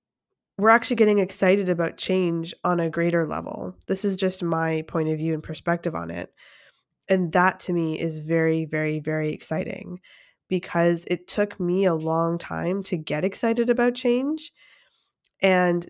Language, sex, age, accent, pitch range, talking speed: English, female, 20-39, American, 165-195 Hz, 160 wpm